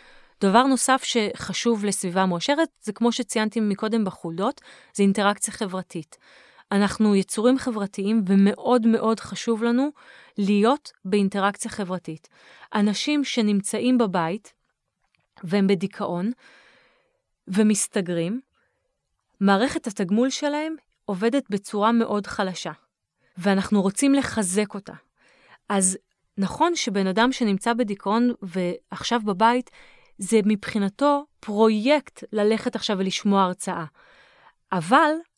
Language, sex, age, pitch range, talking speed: Hebrew, female, 30-49, 200-250 Hz, 95 wpm